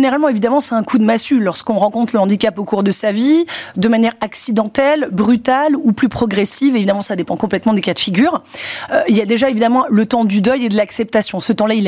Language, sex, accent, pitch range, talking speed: French, female, French, 215-265 Hz, 240 wpm